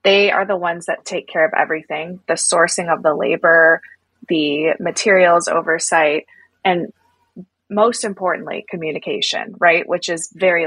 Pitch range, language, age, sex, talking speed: 165-205 Hz, English, 20-39, female, 140 wpm